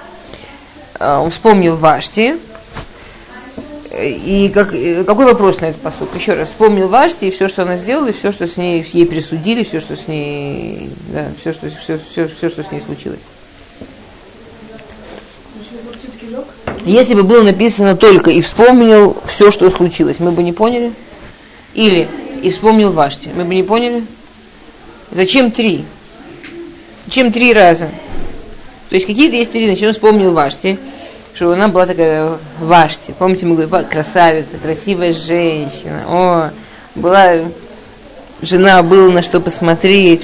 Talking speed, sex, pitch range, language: 140 wpm, female, 165-220 Hz, Russian